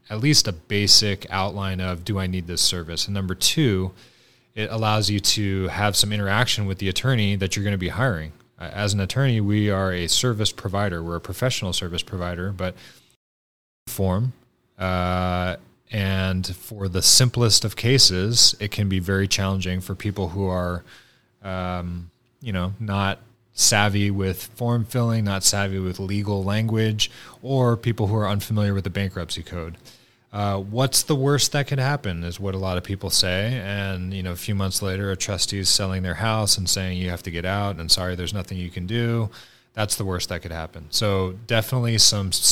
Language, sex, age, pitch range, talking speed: English, male, 30-49, 95-110 Hz, 190 wpm